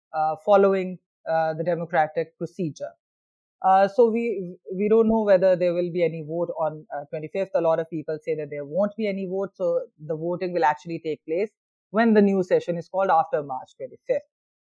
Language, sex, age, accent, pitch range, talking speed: English, female, 30-49, Indian, 165-205 Hz, 195 wpm